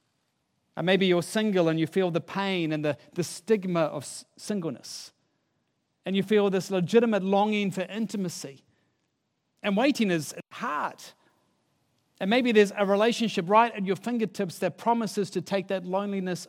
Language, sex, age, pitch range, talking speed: English, male, 40-59, 160-195 Hz, 150 wpm